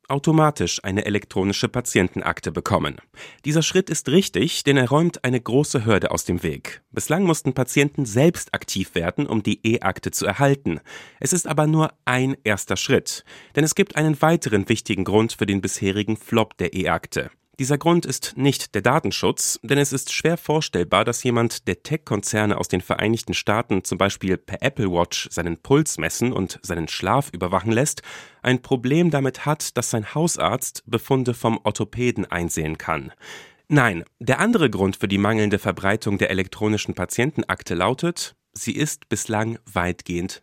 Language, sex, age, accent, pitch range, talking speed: German, male, 40-59, German, 100-140 Hz, 160 wpm